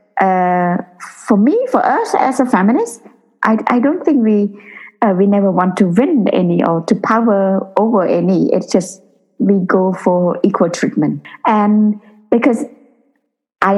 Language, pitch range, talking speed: English, 180-255 Hz, 150 wpm